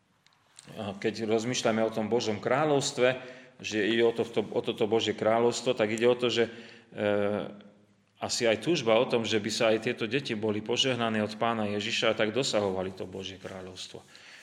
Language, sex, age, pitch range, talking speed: Slovak, male, 30-49, 100-115 Hz, 165 wpm